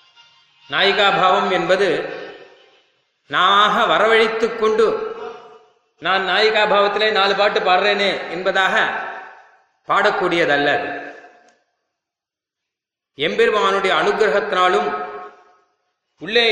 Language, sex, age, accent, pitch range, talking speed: Tamil, male, 30-49, native, 185-225 Hz, 60 wpm